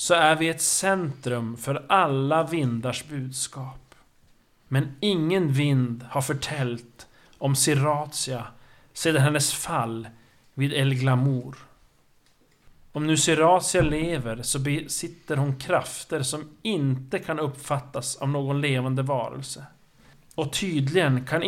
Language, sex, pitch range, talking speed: Swedish, male, 130-160 Hz, 115 wpm